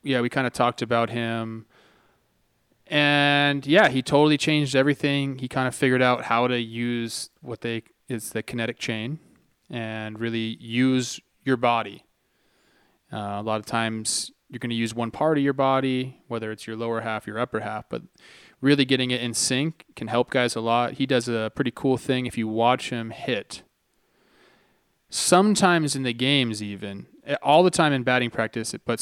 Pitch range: 115-135 Hz